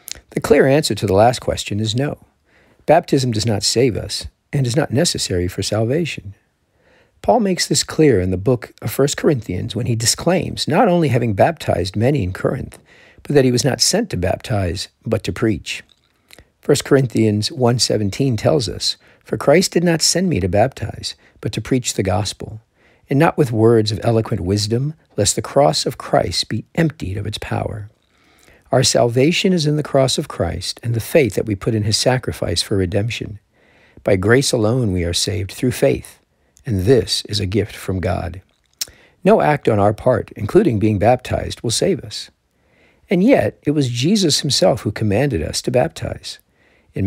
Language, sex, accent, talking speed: English, male, American, 180 wpm